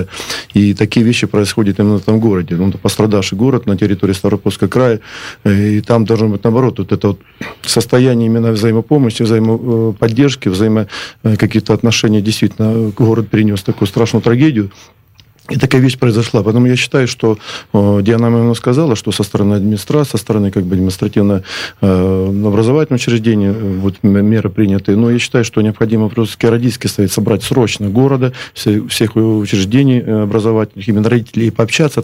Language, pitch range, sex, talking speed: Russian, 105-125 Hz, male, 150 wpm